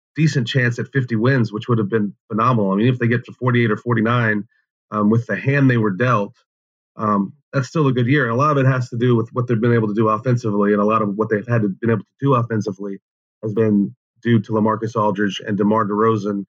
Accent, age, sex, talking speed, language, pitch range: American, 30-49, male, 255 wpm, English, 110-130 Hz